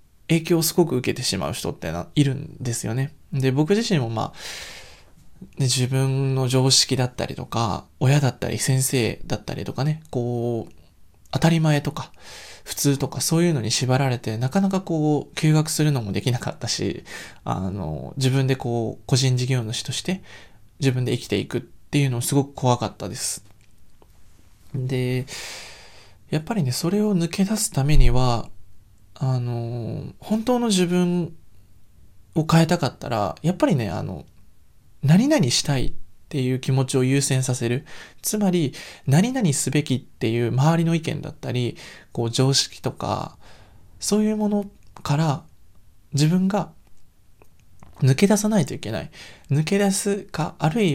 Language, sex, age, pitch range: Japanese, male, 20-39, 115-160 Hz